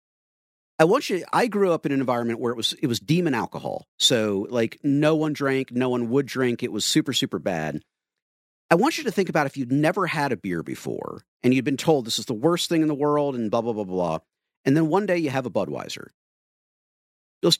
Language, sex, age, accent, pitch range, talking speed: English, male, 40-59, American, 125-165 Hz, 235 wpm